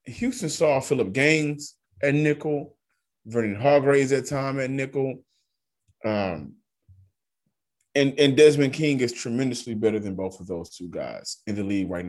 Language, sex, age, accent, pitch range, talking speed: English, male, 30-49, American, 110-145 Hz, 150 wpm